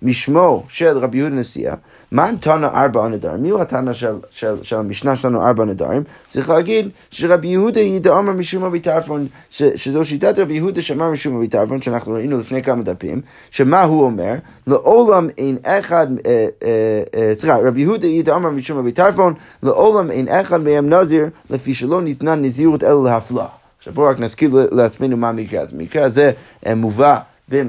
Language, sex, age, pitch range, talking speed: Hebrew, male, 30-49, 125-160 Hz, 140 wpm